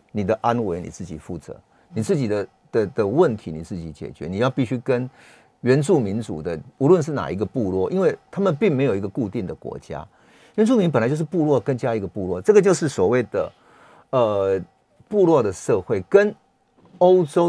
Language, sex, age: Chinese, male, 50-69